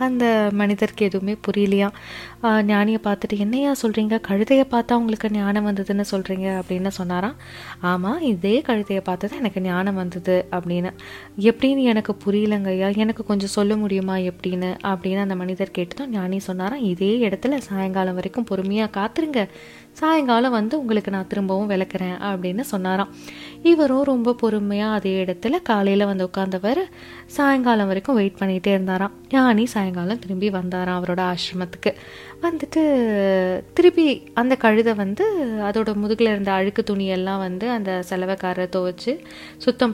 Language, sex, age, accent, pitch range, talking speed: Tamil, female, 20-39, native, 190-230 Hz, 130 wpm